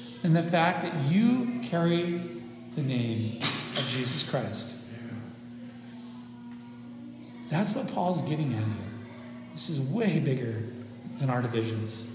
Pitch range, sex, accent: 120-135 Hz, male, American